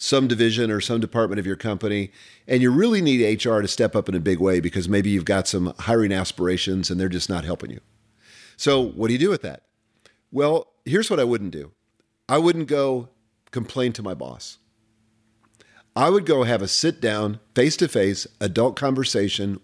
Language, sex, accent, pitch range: English, male, American, 105-140 Hz